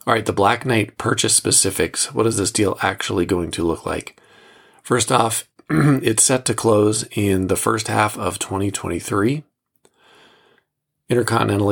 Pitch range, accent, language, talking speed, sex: 100-115 Hz, American, English, 150 wpm, male